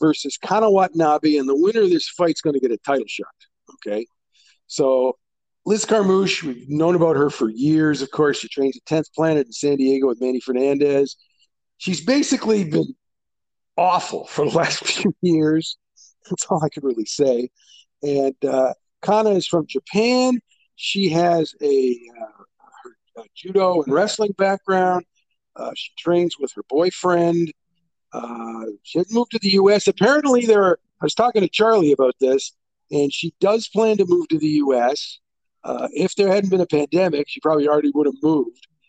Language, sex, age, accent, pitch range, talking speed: English, male, 50-69, American, 140-210 Hz, 175 wpm